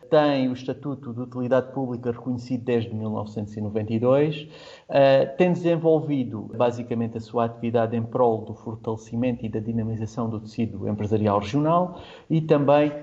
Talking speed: 130 wpm